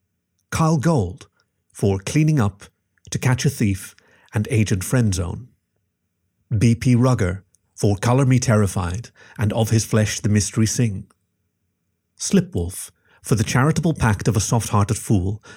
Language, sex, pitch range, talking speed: English, male, 95-120 Hz, 130 wpm